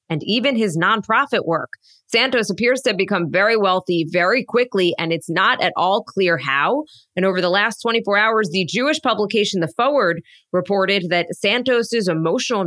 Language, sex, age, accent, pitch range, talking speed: English, female, 20-39, American, 175-225 Hz, 170 wpm